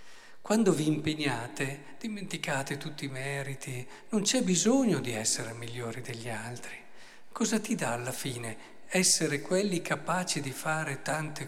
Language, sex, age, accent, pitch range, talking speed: Italian, male, 50-69, native, 135-175 Hz, 135 wpm